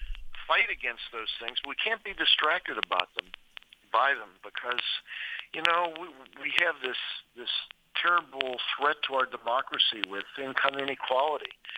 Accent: American